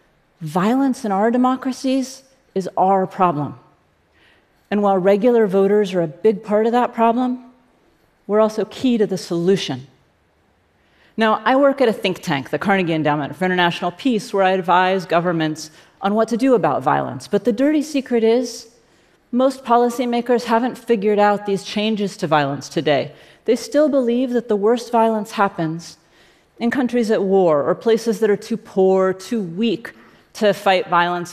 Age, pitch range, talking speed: 40-59, 180-240 Hz, 165 wpm